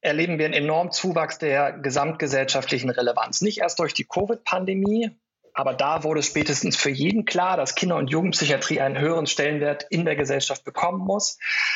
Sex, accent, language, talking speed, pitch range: male, German, German, 165 wpm, 145-180 Hz